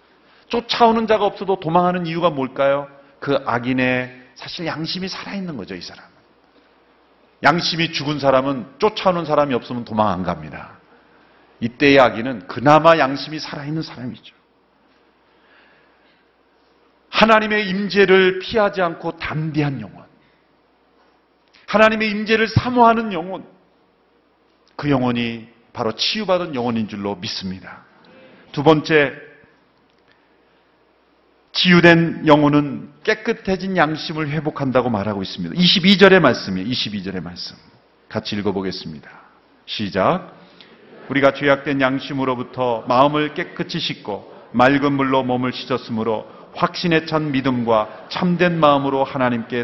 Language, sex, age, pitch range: Korean, male, 40-59, 125-190 Hz